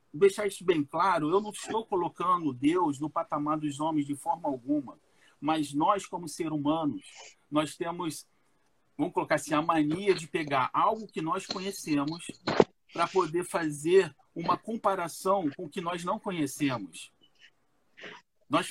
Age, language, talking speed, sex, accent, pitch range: 40-59, Portuguese, 150 wpm, male, Brazilian, 160-215 Hz